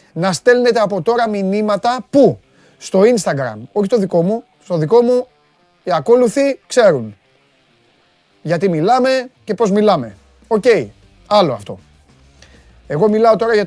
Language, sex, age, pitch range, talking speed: Greek, male, 30-49, 135-200 Hz, 135 wpm